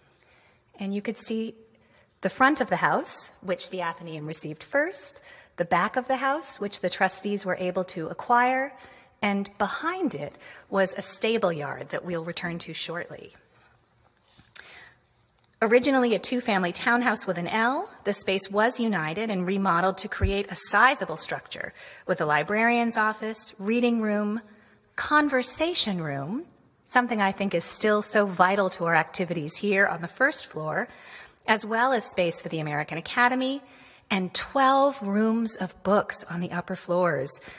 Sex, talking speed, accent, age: female, 155 wpm, American, 30-49